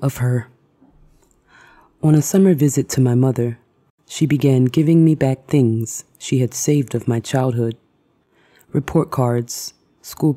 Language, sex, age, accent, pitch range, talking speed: English, female, 20-39, American, 120-150 Hz, 140 wpm